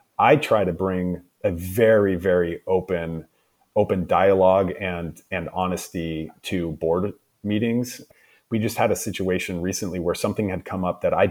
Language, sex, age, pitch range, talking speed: English, male, 30-49, 90-105 Hz, 155 wpm